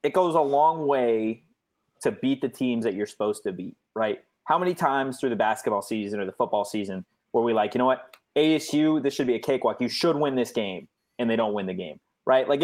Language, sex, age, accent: English, male, 20-39, American